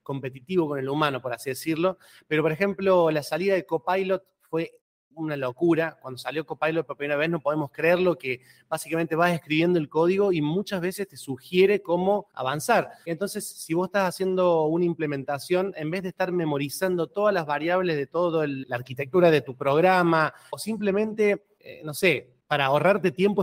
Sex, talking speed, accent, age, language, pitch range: male, 175 wpm, Argentinian, 30-49, Spanish, 150-190 Hz